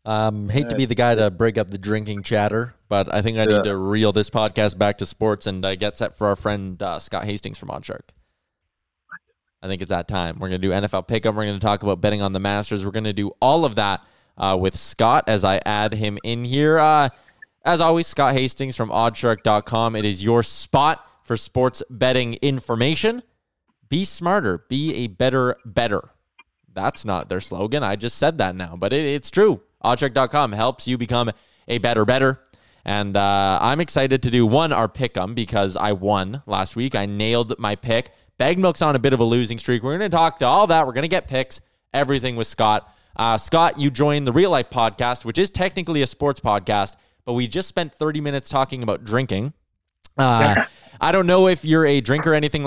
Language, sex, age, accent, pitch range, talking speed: English, male, 20-39, American, 105-140 Hz, 215 wpm